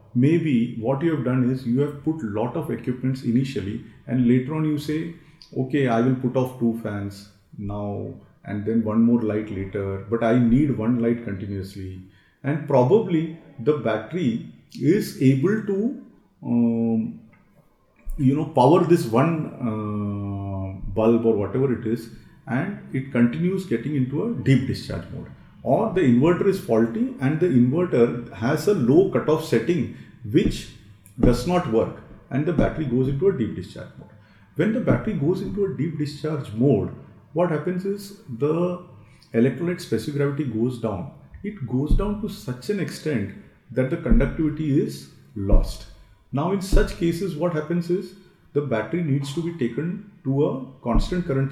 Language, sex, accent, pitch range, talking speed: English, male, Indian, 115-165 Hz, 165 wpm